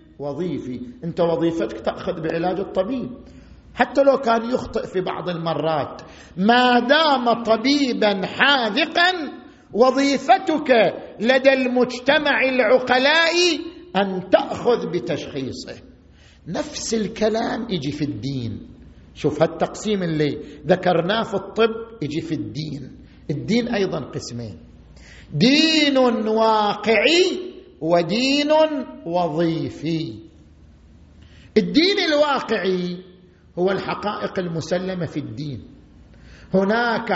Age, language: 50-69, Arabic